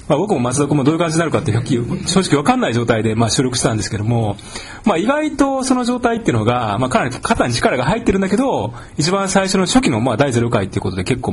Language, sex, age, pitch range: Japanese, male, 30-49, 110-165 Hz